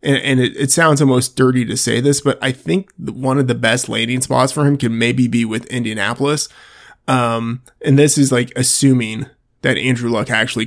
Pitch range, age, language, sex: 120-140 Hz, 20-39, English, male